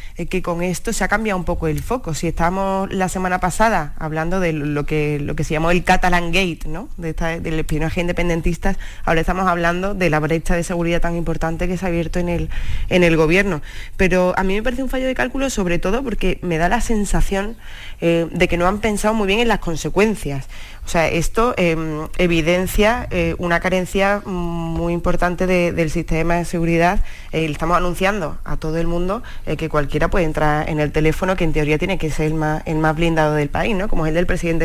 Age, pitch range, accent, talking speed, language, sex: 20-39, 160-190 Hz, Spanish, 210 wpm, Spanish, female